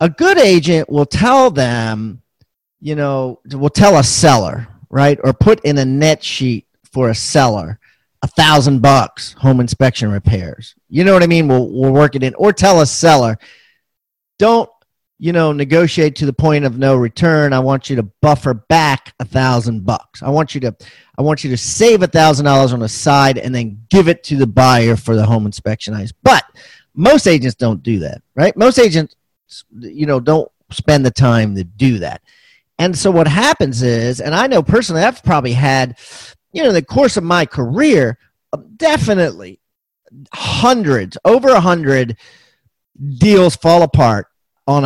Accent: American